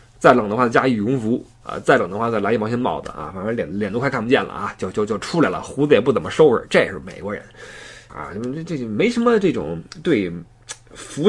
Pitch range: 130-215 Hz